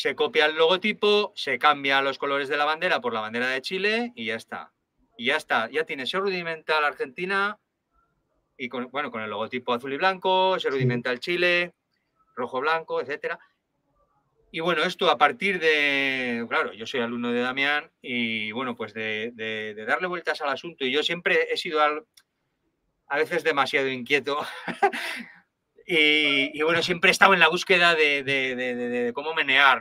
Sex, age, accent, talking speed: male, 30-49, Spanish, 180 wpm